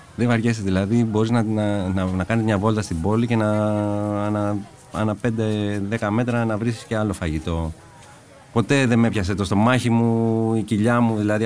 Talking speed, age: 190 wpm, 30-49